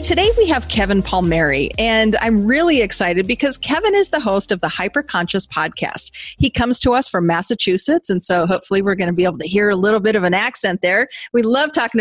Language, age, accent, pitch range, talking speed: English, 40-59, American, 185-250 Hz, 225 wpm